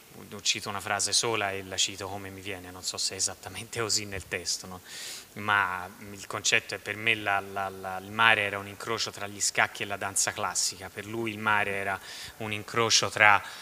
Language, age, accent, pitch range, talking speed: Italian, 20-39, native, 100-115 Hz, 215 wpm